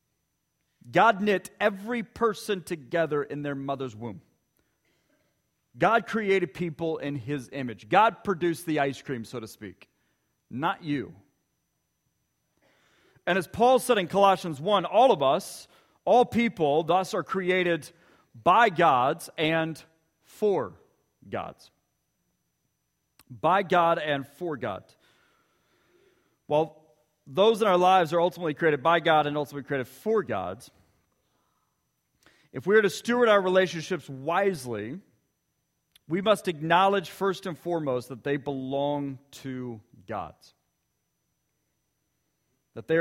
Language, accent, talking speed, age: English, American, 120 wpm, 40-59